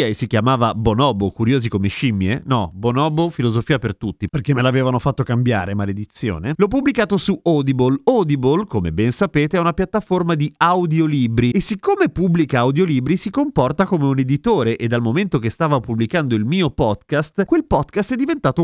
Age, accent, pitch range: 30-49, native, 125-180 Hz